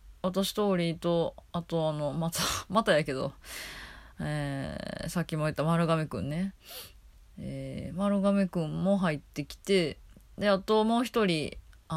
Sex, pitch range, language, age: female, 135-195 Hz, Japanese, 20-39